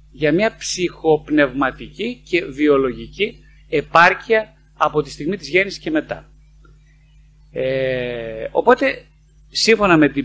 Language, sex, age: Greek, male, 30-49